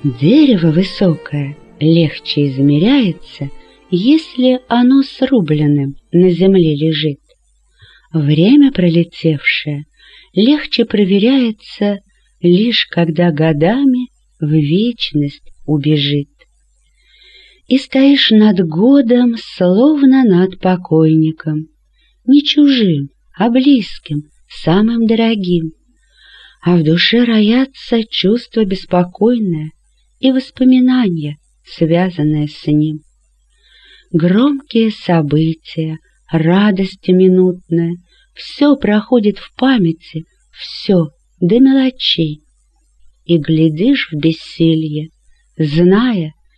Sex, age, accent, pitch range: female, 40-59, native, 160-240 Hz